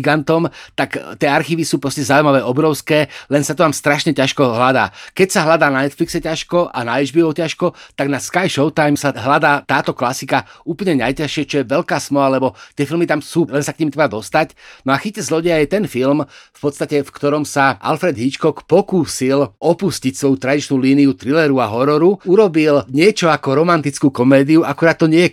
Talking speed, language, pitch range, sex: 190 wpm, Slovak, 135-160 Hz, male